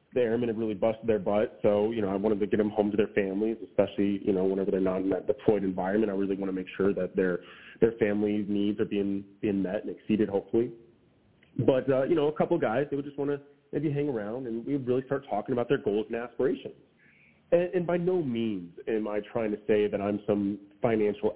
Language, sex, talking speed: English, male, 245 wpm